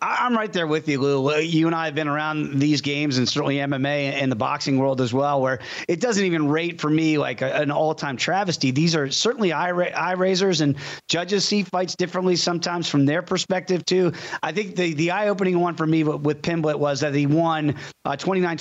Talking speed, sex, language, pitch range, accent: 230 wpm, male, English, 145-175 Hz, American